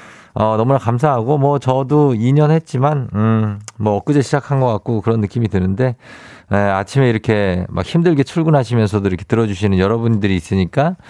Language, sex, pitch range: Korean, male, 105-145 Hz